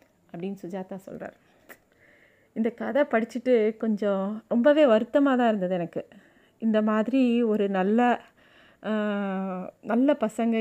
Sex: female